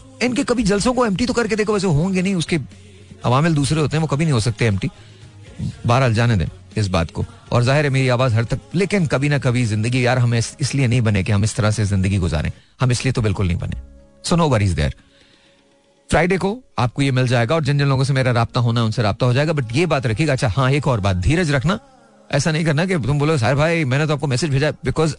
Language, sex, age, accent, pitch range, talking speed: Hindi, male, 40-59, native, 120-190 Hz, 160 wpm